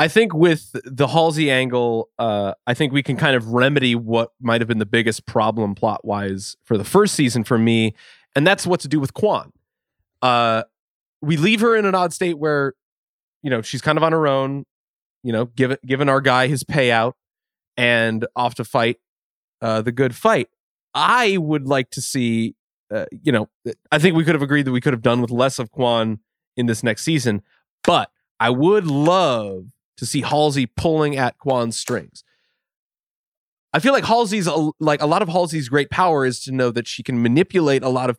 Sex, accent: male, American